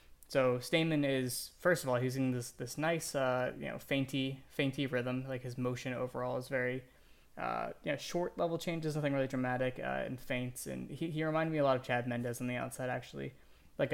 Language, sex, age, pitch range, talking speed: English, male, 20-39, 125-140 Hz, 215 wpm